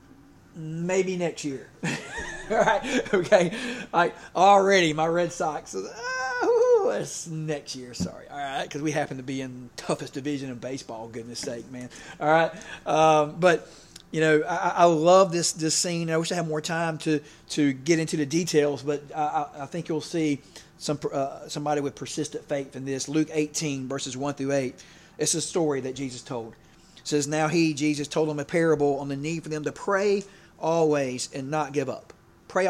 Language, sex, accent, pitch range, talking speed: English, male, American, 145-180 Hz, 190 wpm